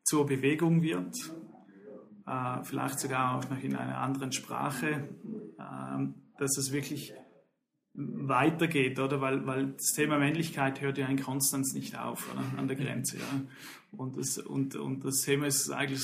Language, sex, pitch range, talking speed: German, male, 135-150 Hz, 155 wpm